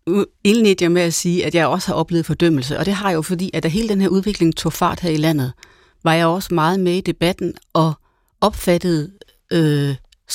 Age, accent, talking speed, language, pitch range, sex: 30-49, native, 220 wpm, Danish, 160-190 Hz, female